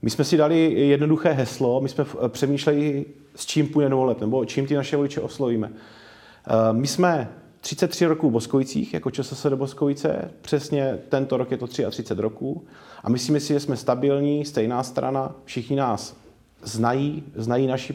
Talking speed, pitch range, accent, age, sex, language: 165 wpm, 115-135 Hz, native, 30-49, male, Czech